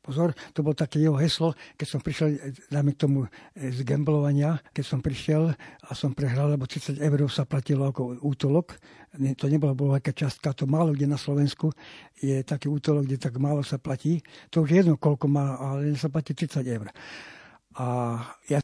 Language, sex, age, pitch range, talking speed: Slovak, male, 60-79, 140-155 Hz, 175 wpm